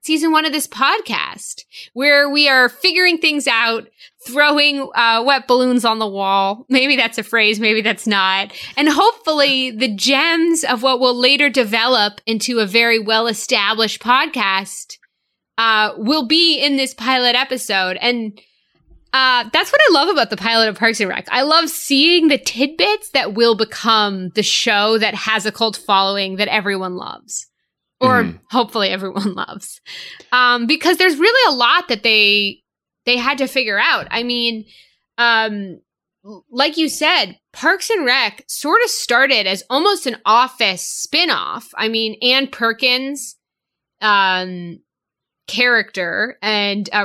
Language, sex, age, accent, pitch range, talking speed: English, female, 20-39, American, 210-275 Hz, 150 wpm